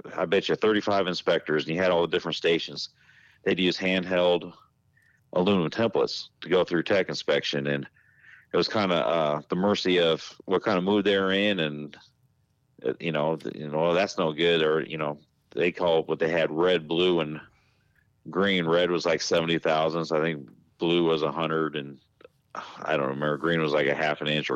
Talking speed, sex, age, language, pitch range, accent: 205 wpm, male, 40-59, English, 75-95 Hz, American